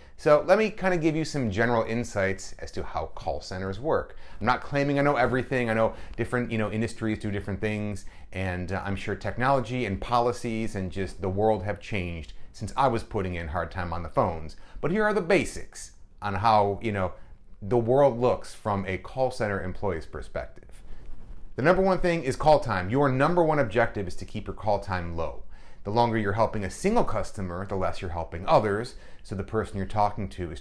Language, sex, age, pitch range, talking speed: English, male, 30-49, 95-120 Hz, 215 wpm